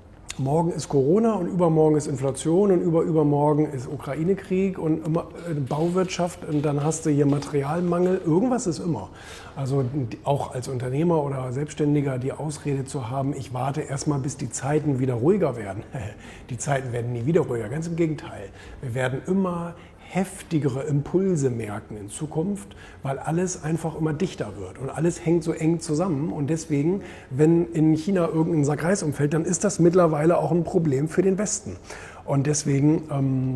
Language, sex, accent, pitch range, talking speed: German, male, German, 135-165 Hz, 170 wpm